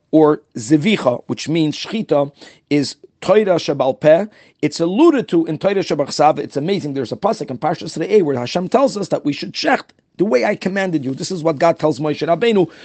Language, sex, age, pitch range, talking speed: English, male, 40-59, 155-210 Hz, 195 wpm